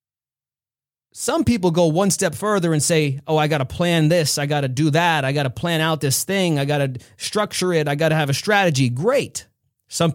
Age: 30-49